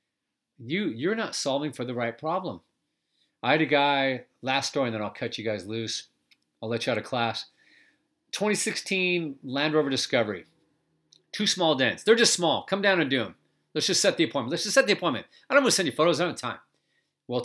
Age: 40-59